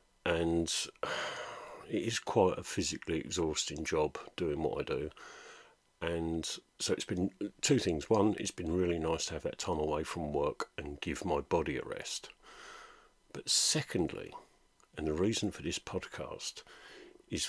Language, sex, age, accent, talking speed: English, male, 50-69, British, 155 wpm